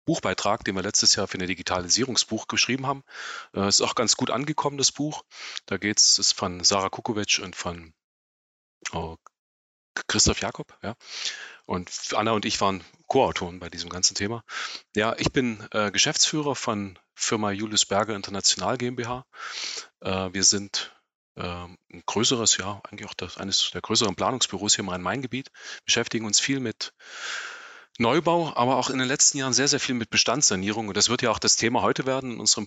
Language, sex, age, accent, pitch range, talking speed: German, male, 30-49, German, 95-125 Hz, 175 wpm